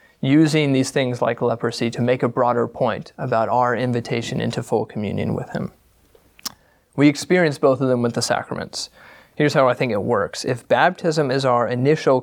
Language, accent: English, American